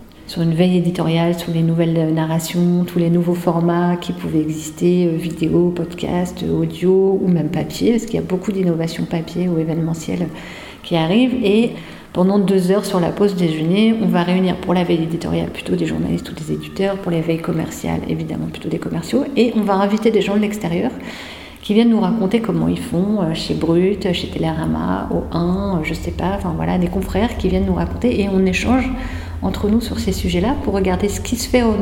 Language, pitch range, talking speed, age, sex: French, 165-200 Hz, 205 wpm, 50-69, female